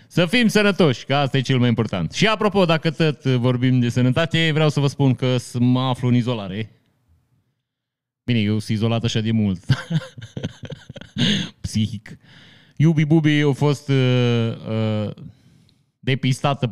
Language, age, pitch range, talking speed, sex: Romanian, 30-49, 105-140 Hz, 145 wpm, male